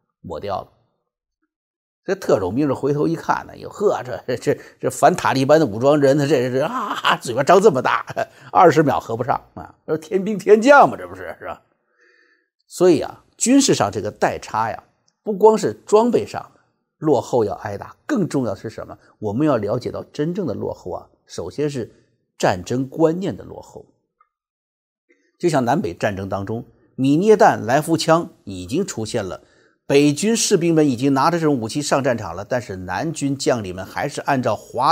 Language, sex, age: Chinese, male, 50-69